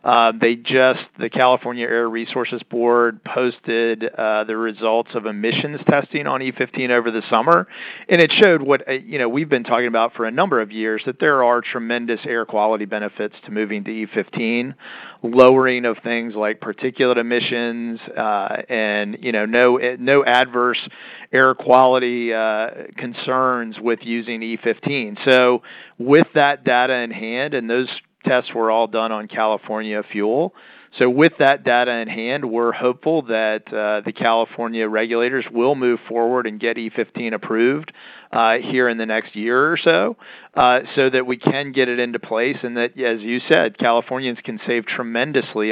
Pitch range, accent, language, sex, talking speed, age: 110-125 Hz, American, English, male, 170 wpm, 40-59